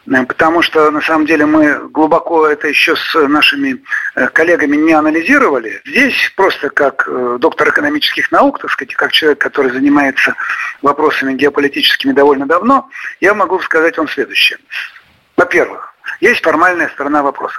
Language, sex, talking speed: Russian, male, 135 wpm